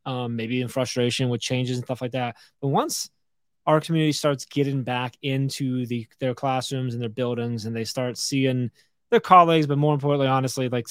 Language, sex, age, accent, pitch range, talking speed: English, male, 20-39, American, 125-145 Hz, 195 wpm